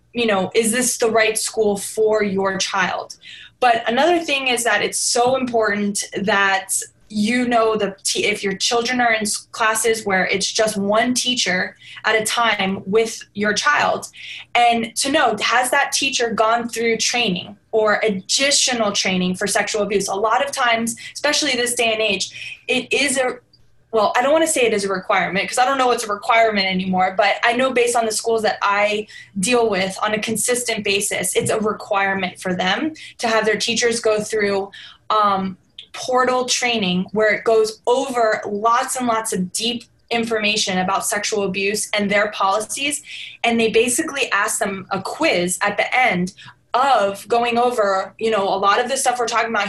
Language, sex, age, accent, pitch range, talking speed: English, female, 20-39, American, 200-240 Hz, 185 wpm